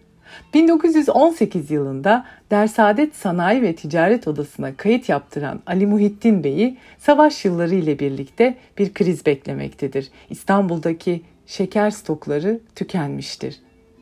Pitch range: 155-220 Hz